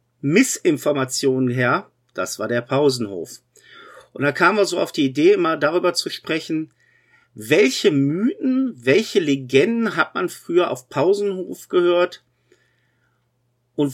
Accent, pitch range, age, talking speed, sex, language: German, 140-235 Hz, 50-69, 125 wpm, male, German